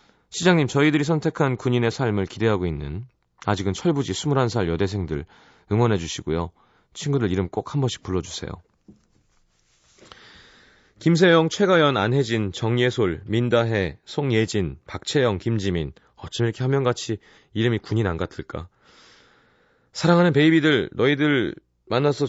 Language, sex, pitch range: Korean, male, 80-125 Hz